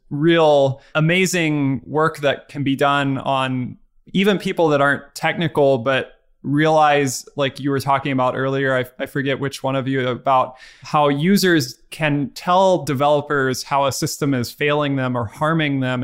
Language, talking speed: English, 160 wpm